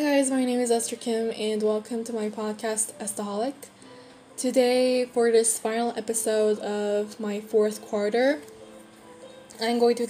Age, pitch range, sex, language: 10-29, 205-235 Hz, female, Korean